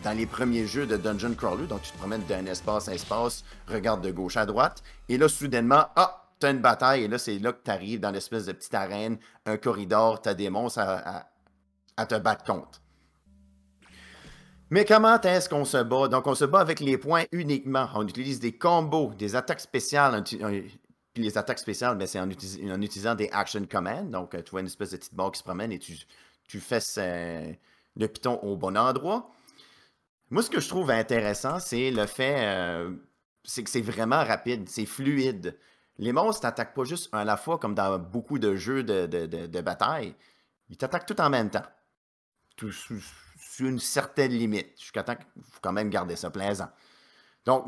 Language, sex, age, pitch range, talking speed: French, male, 30-49, 100-135 Hz, 205 wpm